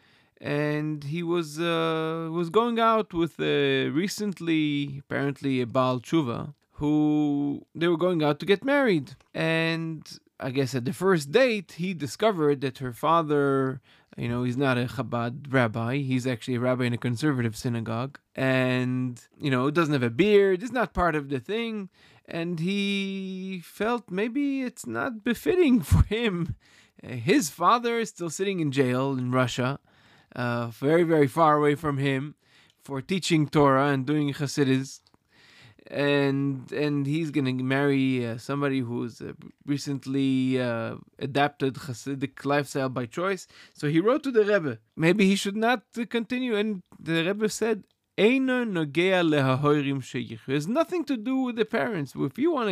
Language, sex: English, male